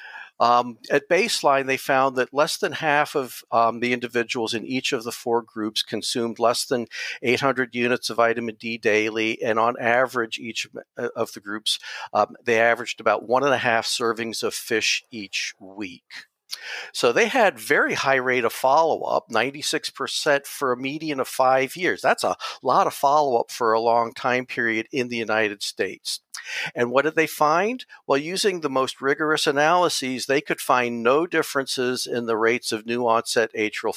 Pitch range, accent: 115-135 Hz, American